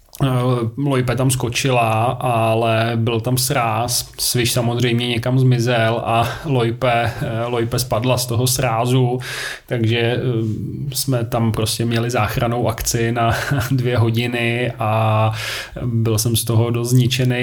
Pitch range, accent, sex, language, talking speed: 115-125 Hz, native, male, Czech, 115 wpm